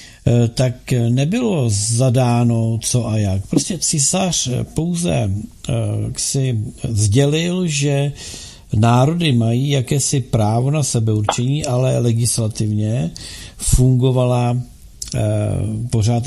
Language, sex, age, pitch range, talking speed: Czech, male, 50-69, 110-135 Hz, 80 wpm